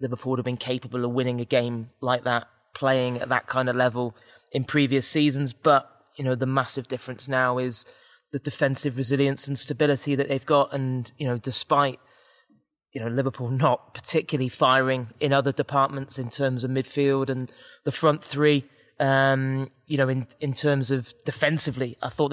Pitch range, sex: 125-140 Hz, male